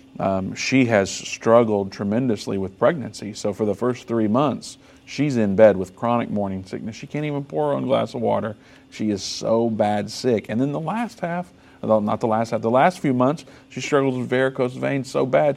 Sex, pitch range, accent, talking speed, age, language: male, 105-125 Hz, American, 210 wpm, 50-69, English